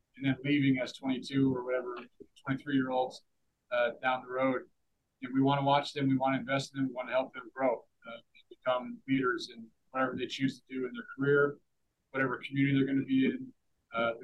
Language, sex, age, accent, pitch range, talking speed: English, male, 40-59, American, 130-145 Hz, 205 wpm